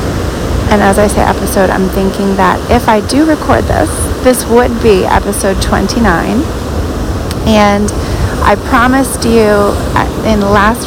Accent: American